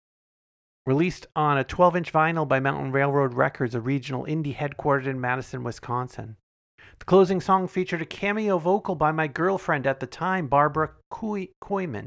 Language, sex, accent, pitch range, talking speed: English, male, American, 130-180 Hz, 155 wpm